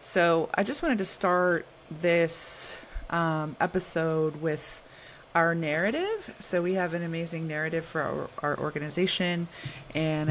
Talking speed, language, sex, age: 135 wpm, English, female, 30-49